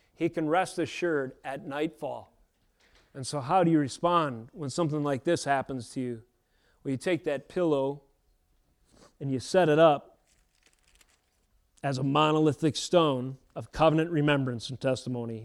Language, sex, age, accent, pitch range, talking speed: English, male, 30-49, American, 135-170 Hz, 150 wpm